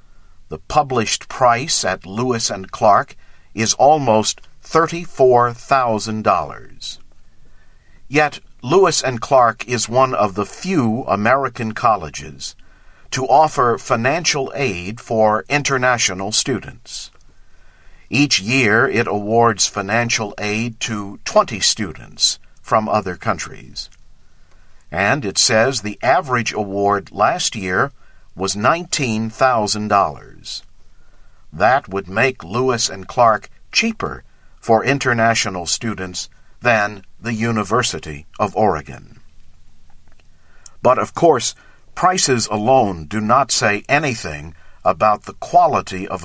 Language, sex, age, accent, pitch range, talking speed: English, male, 50-69, American, 90-120 Hz, 100 wpm